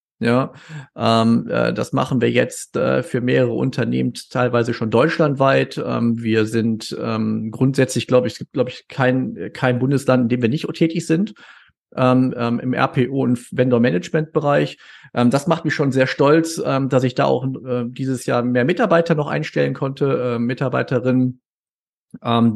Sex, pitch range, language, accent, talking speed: male, 120-135 Hz, German, German, 165 wpm